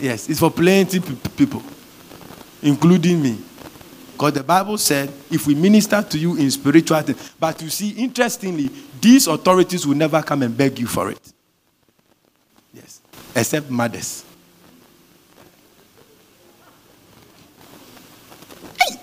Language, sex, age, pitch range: English, male, 50-69, 140-185 Hz